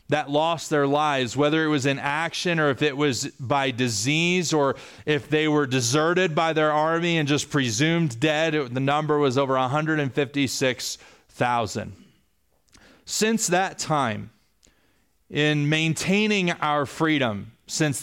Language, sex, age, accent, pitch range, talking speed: English, male, 30-49, American, 130-155 Hz, 135 wpm